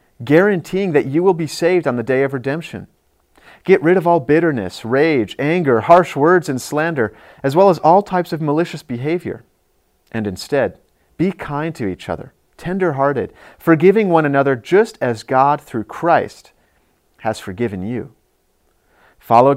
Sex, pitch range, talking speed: male, 125-165 Hz, 155 wpm